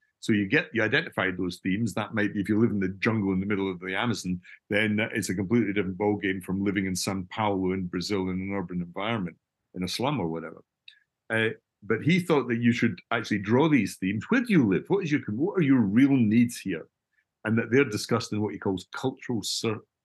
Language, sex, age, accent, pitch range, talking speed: English, male, 50-69, British, 95-120 Hz, 235 wpm